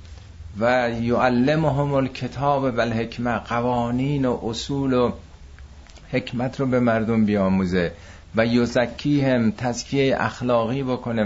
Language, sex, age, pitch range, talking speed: Persian, male, 50-69, 90-125 Hz, 100 wpm